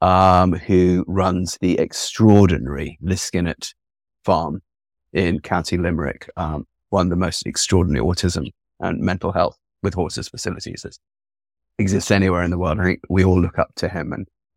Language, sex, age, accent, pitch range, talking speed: English, male, 30-49, British, 90-105 Hz, 155 wpm